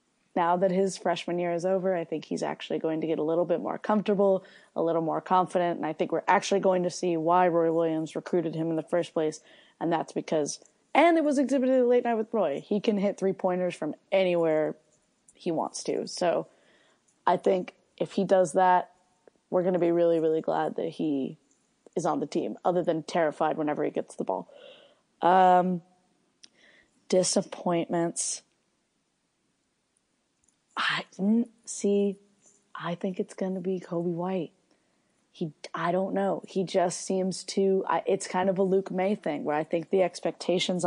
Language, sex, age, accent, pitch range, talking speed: English, female, 20-39, American, 165-195 Hz, 180 wpm